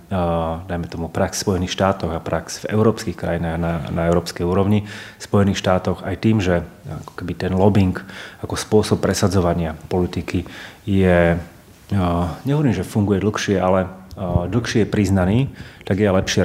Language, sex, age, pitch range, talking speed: Slovak, male, 30-49, 85-100 Hz, 155 wpm